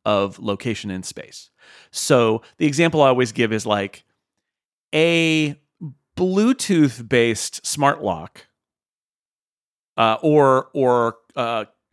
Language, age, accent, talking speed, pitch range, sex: English, 40-59, American, 105 wpm, 105-140 Hz, male